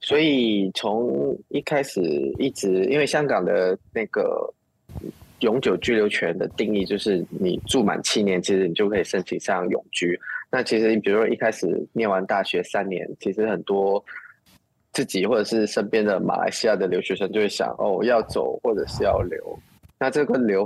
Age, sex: 20-39, male